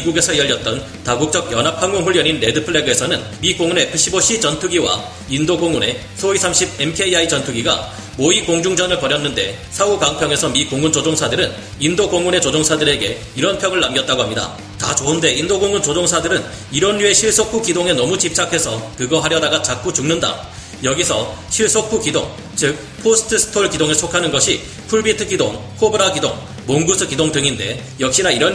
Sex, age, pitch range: male, 40-59, 140-185 Hz